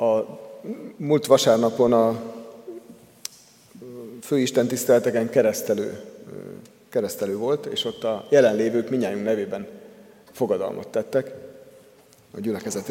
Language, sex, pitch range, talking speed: Hungarian, male, 110-155 Hz, 85 wpm